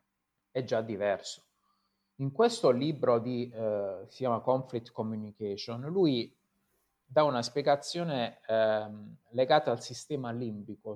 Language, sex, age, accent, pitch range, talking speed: Italian, male, 30-49, native, 105-120 Hz, 115 wpm